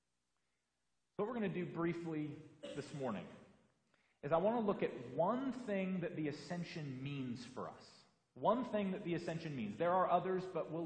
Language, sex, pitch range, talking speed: English, male, 120-175 Hz, 180 wpm